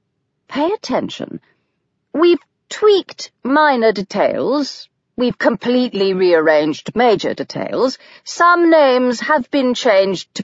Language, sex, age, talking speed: English, female, 40-59, 100 wpm